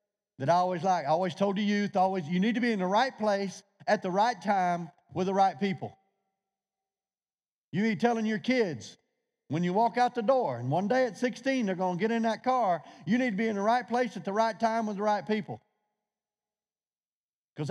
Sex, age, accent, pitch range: male, 40-59, American, 170-225 Hz